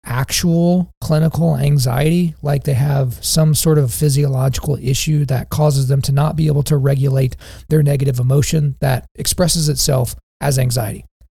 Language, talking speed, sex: English, 150 wpm, male